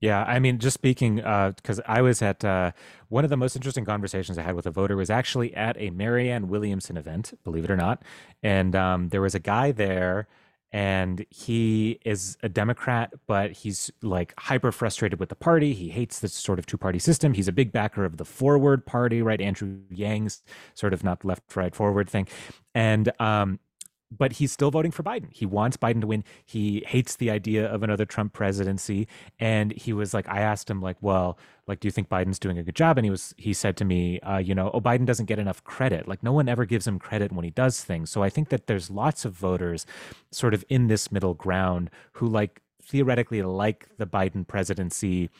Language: English